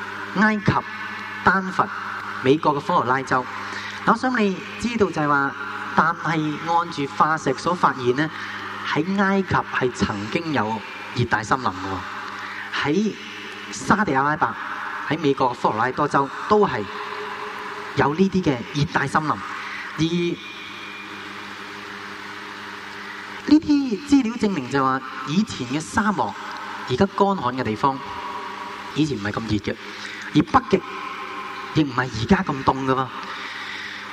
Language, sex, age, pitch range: Chinese, male, 30-49, 130-195 Hz